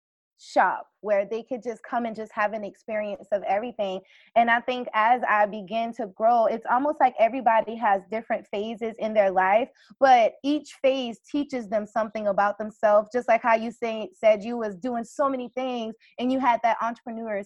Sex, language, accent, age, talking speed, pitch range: female, English, American, 20-39, 190 wpm, 205-260 Hz